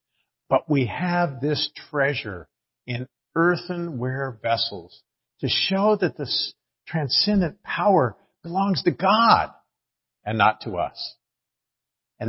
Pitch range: 120-160 Hz